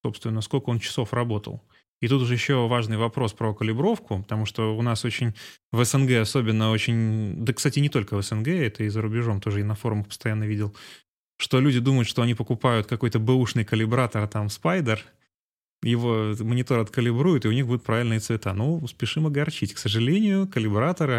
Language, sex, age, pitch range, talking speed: Russian, male, 20-39, 110-130 Hz, 180 wpm